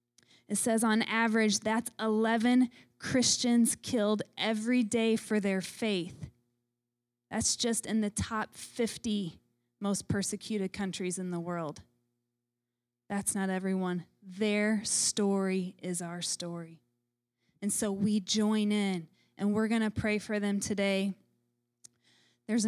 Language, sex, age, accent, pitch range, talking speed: English, female, 20-39, American, 170-225 Hz, 125 wpm